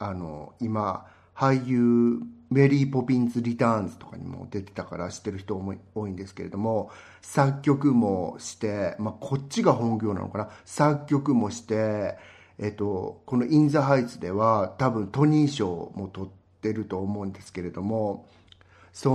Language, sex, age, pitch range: Japanese, male, 50-69, 95-125 Hz